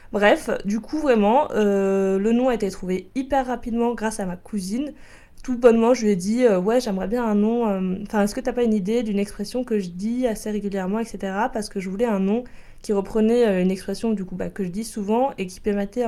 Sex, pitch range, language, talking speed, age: female, 195-230 Hz, French, 255 wpm, 20-39